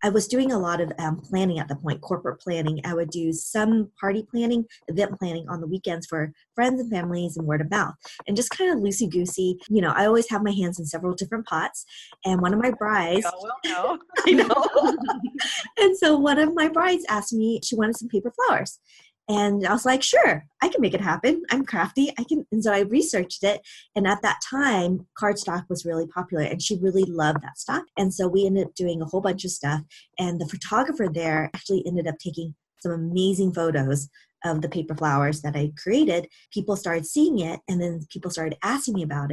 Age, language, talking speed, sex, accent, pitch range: 20-39, English, 215 wpm, female, American, 170-225 Hz